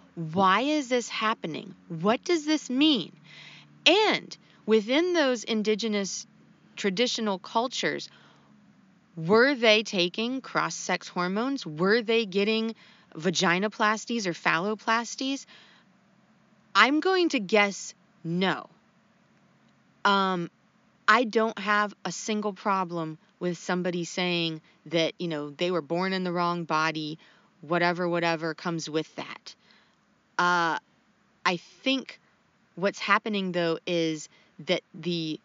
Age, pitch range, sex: 30-49, 165-215 Hz, female